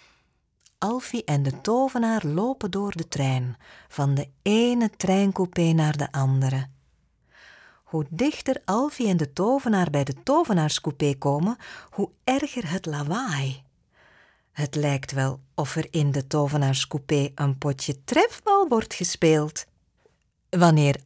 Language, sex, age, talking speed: Dutch, female, 40-59, 125 wpm